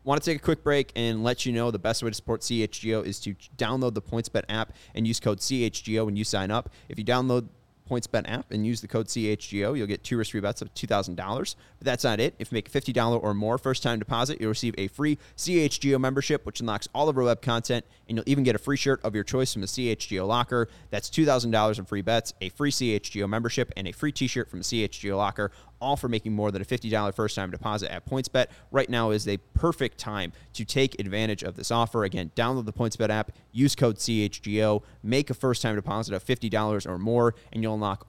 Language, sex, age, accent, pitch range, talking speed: English, male, 30-49, American, 105-125 Hz, 230 wpm